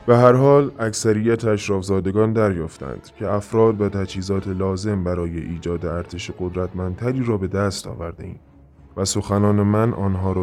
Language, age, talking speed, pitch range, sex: Persian, 20-39, 145 wpm, 90-110 Hz, male